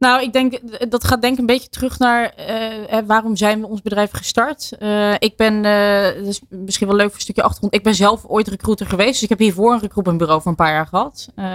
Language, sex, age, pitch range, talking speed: Dutch, female, 20-39, 175-220 Hz, 245 wpm